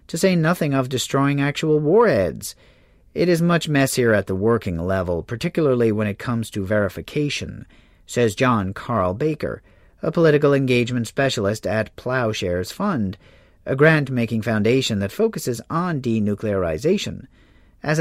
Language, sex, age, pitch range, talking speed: English, male, 40-59, 100-145 Hz, 135 wpm